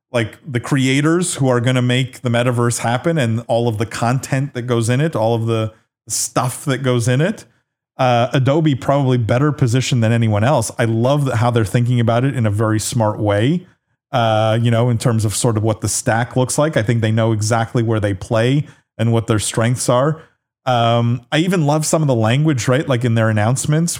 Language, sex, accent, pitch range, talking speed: English, male, American, 115-140 Hz, 220 wpm